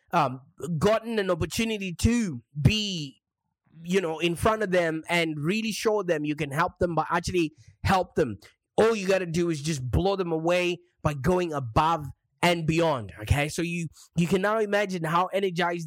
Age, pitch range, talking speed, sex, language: 20-39, 150-195 Hz, 180 wpm, male, English